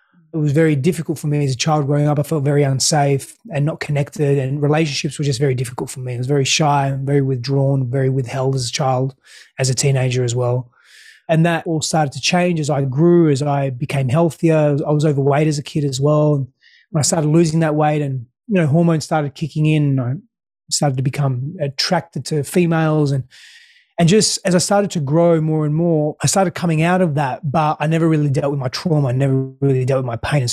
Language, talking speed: English, 230 wpm